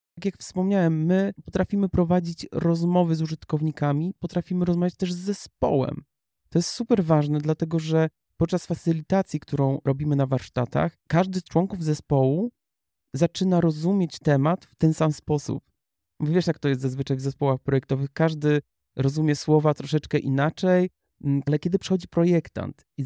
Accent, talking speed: native, 145 wpm